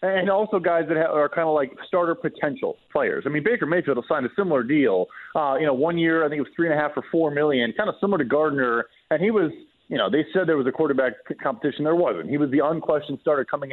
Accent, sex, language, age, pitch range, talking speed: American, male, English, 30-49, 150-185 Hz, 270 wpm